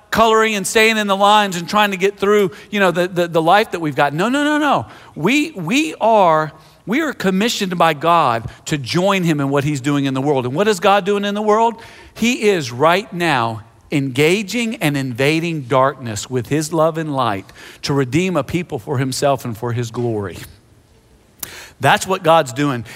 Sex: male